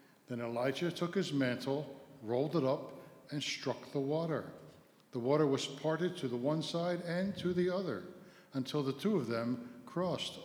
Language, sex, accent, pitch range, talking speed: English, male, American, 125-165 Hz, 170 wpm